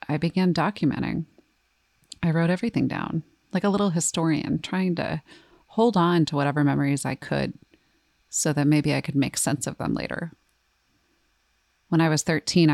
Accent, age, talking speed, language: American, 30-49, 160 wpm, English